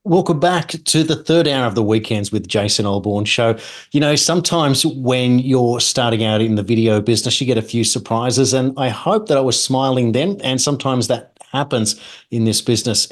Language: English